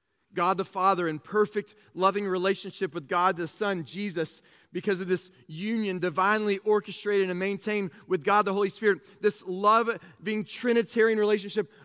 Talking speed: 150 wpm